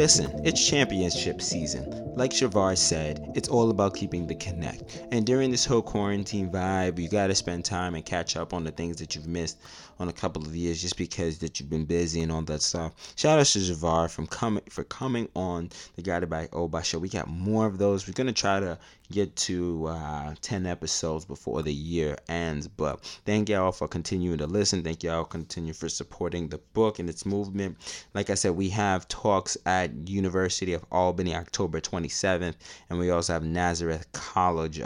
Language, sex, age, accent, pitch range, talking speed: English, male, 20-39, American, 80-95 Hz, 200 wpm